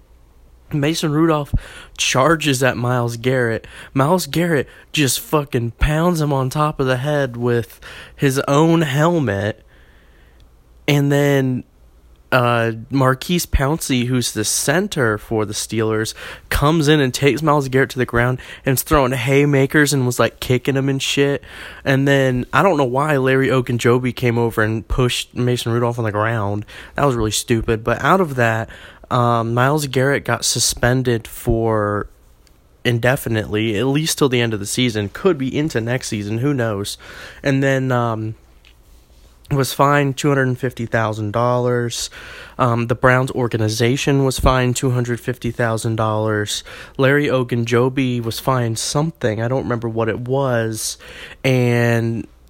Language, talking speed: English, 140 wpm